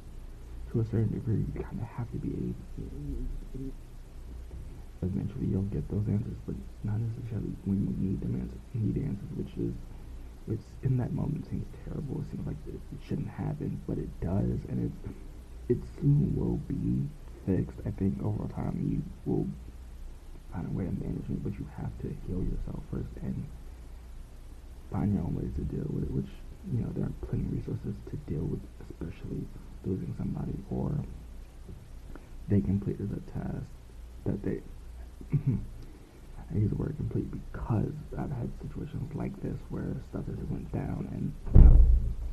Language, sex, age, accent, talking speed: English, male, 20-39, American, 165 wpm